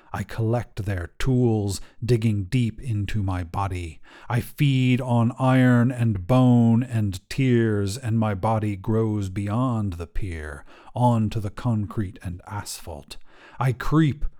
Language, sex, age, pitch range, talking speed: English, male, 40-59, 100-125 Hz, 130 wpm